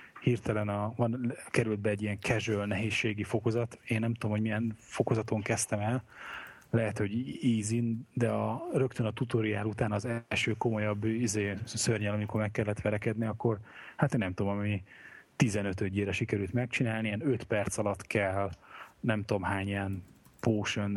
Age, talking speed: 30-49, 160 wpm